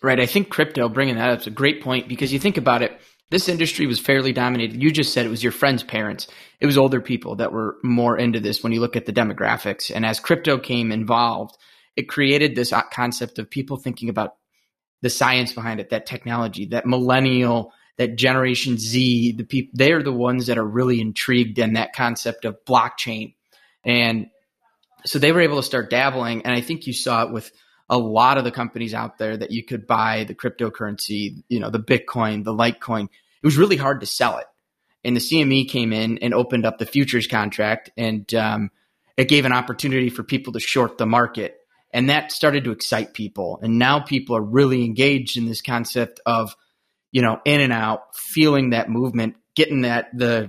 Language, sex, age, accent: English, male, 20-39, American